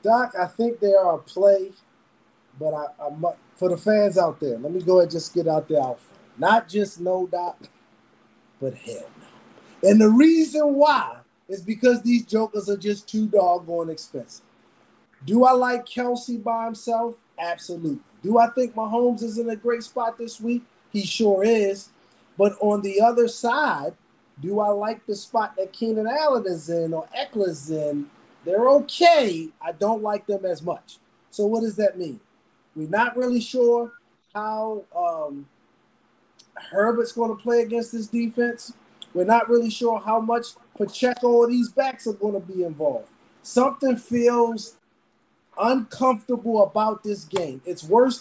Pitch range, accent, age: 195-240 Hz, American, 30-49